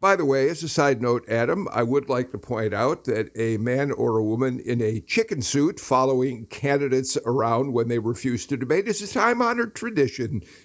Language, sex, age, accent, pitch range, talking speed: English, male, 60-79, American, 120-155 Hz, 205 wpm